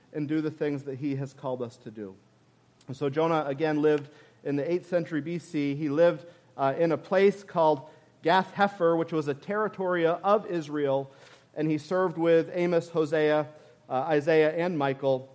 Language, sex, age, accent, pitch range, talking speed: English, male, 40-59, American, 140-170 Hz, 170 wpm